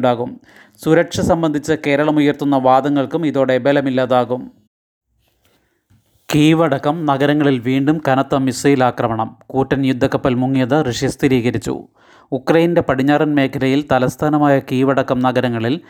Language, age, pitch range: Malayalam, 30-49, 130-145 Hz